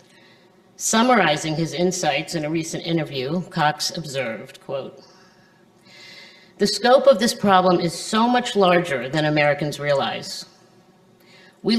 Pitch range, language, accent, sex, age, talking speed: 165-190 Hz, English, American, female, 50-69, 110 wpm